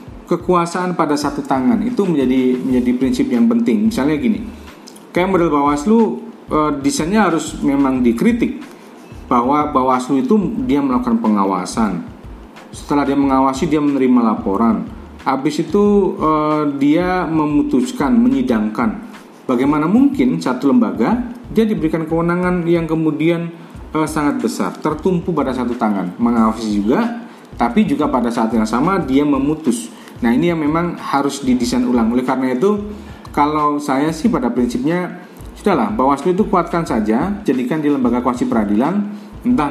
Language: Indonesian